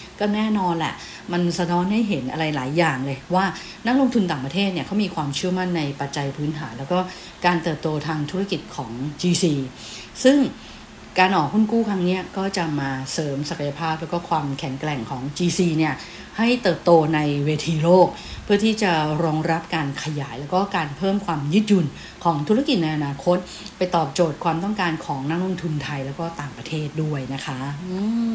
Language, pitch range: English, 150-185 Hz